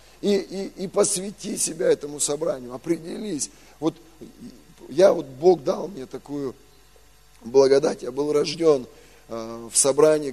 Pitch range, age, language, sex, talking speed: 125-165 Hz, 20-39, Russian, male, 120 wpm